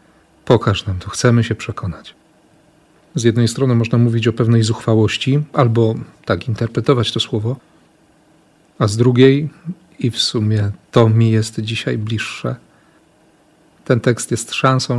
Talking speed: 135 wpm